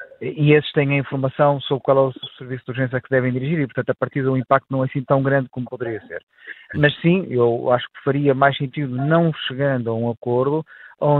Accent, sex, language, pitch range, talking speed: Portuguese, male, Portuguese, 130-155 Hz, 230 wpm